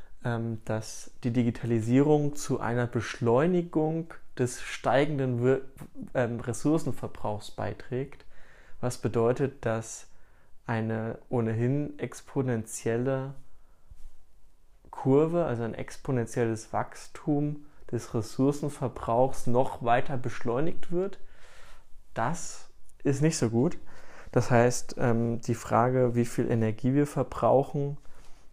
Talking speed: 85 wpm